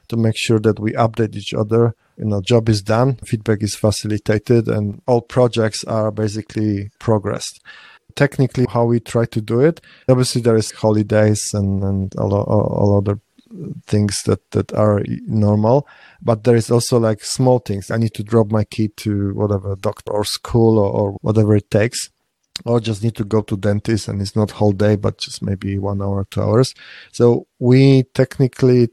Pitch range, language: 105-120 Hz, English